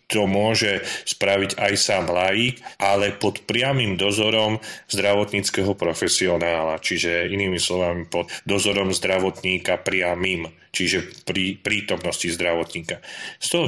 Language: Slovak